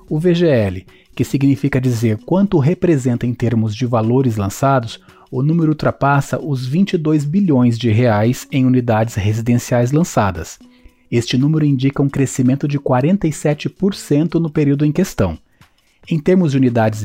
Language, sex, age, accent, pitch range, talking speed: Portuguese, male, 30-49, Brazilian, 115-155 Hz, 135 wpm